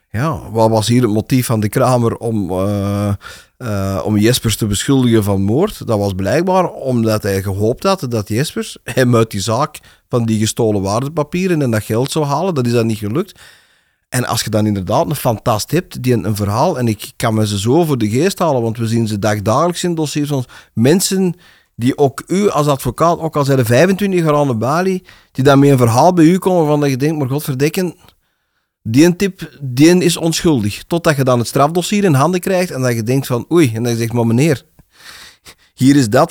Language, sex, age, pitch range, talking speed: Dutch, male, 40-59, 115-155 Hz, 215 wpm